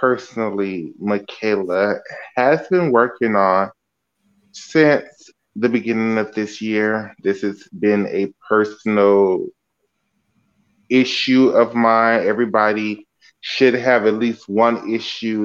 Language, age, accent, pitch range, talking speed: English, 20-39, American, 105-120 Hz, 105 wpm